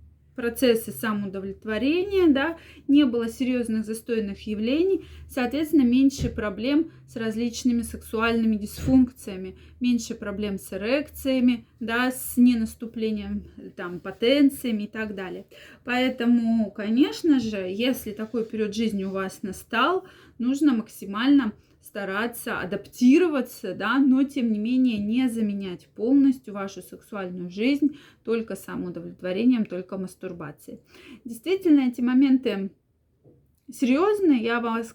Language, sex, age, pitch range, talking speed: Russian, female, 20-39, 205-265 Hz, 105 wpm